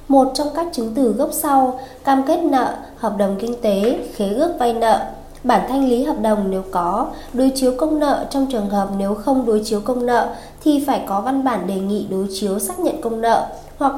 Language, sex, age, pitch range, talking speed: Vietnamese, female, 20-39, 215-275 Hz, 225 wpm